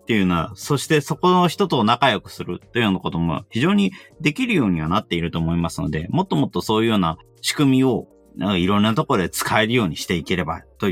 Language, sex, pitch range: Japanese, male, 90-135 Hz